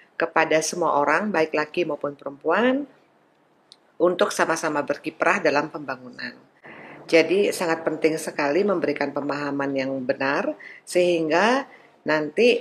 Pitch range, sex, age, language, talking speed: 145-190 Hz, female, 40-59, Indonesian, 105 wpm